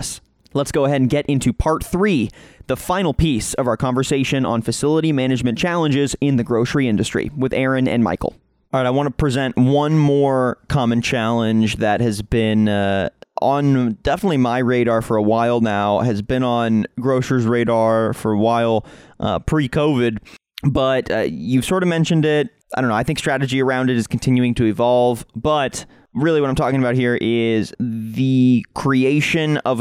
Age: 20-39